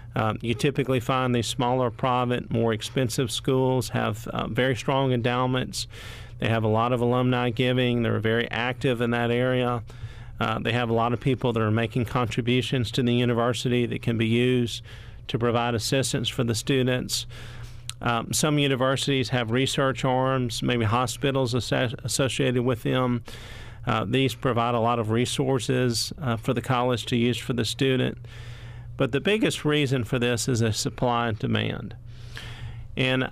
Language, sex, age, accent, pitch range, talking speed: English, male, 40-59, American, 115-130 Hz, 165 wpm